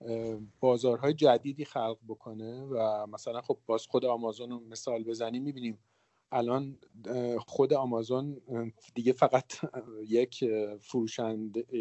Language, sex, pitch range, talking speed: Persian, male, 115-145 Hz, 105 wpm